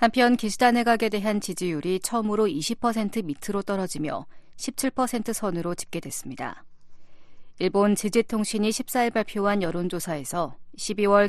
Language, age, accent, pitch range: Korean, 40-59, native, 180-225 Hz